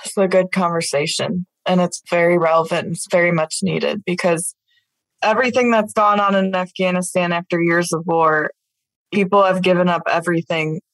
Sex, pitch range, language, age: female, 170-195 Hz, English, 20-39